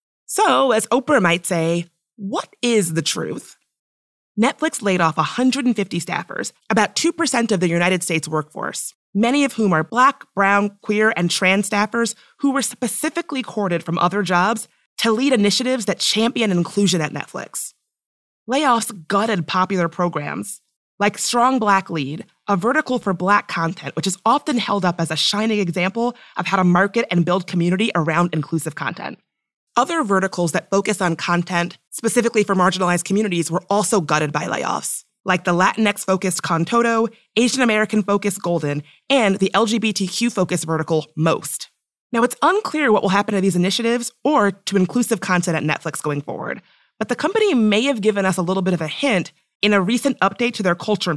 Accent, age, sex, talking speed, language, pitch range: American, 30-49, female, 165 wpm, English, 175-230 Hz